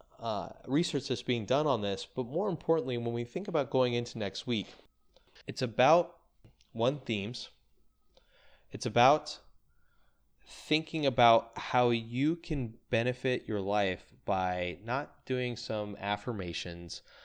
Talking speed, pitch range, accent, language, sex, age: 130 wpm, 90-120 Hz, American, English, male, 20-39